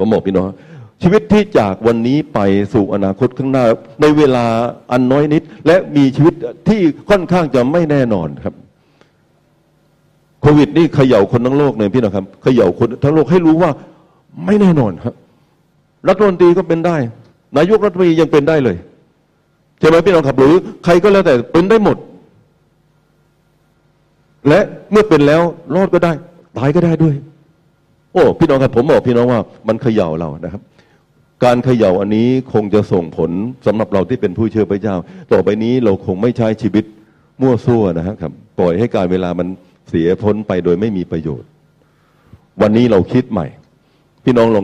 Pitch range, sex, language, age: 110-160 Hz, male, Thai, 60-79